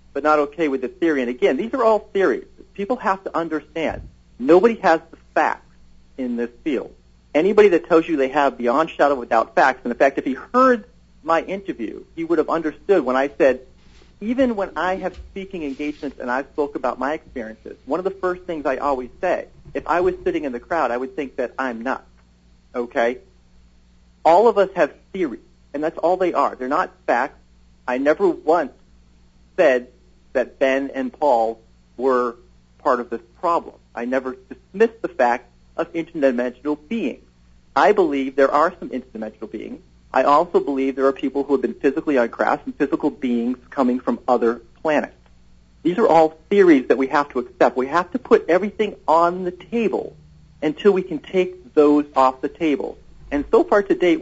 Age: 40-59